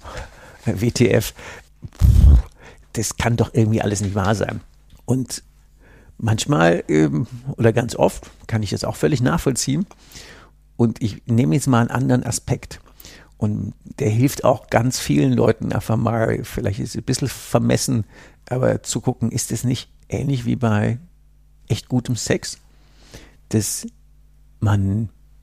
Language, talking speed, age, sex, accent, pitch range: German, 135 wpm, 60-79, male, German, 105-120 Hz